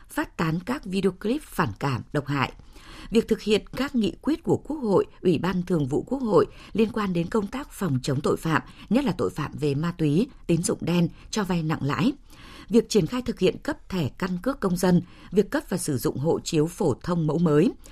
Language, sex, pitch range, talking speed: Vietnamese, female, 155-215 Hz, 230 wpm